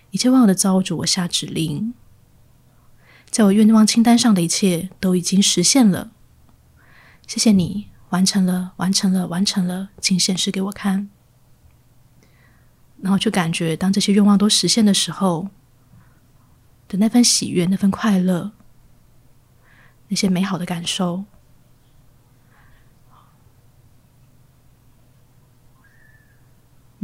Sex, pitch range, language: female, 130-205 Hz, Chinese